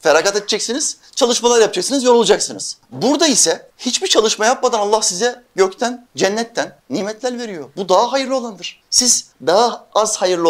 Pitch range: 130-210 Hz